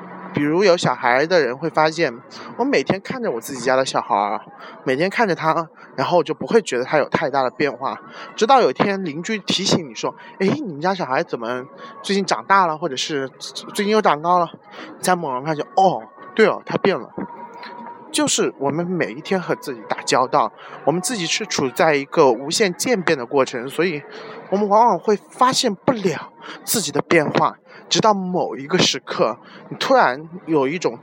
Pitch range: 150-195 Hz